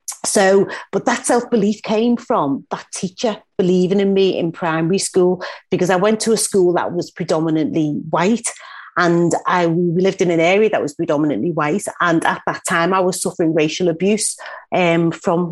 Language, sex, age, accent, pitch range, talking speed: English, female, 40-59, British, 165-205 Hz, 175 wpm